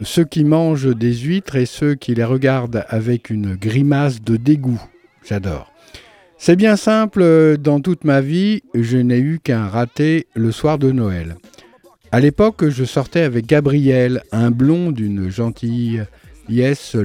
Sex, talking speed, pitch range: male, 150 wpm, 110-155 Hz